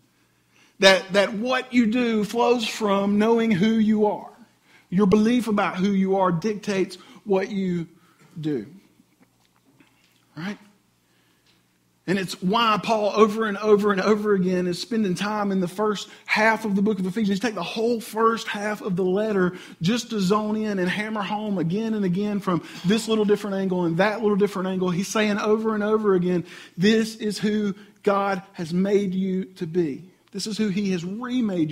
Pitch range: 150-205 Hz